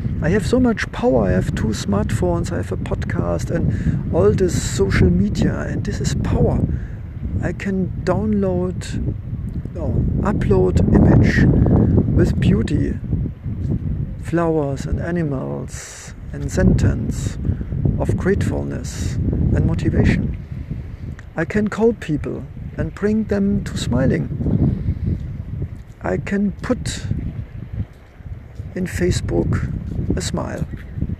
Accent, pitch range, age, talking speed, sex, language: German, 100-170 Hz, 50-69, 105 wpm, male, English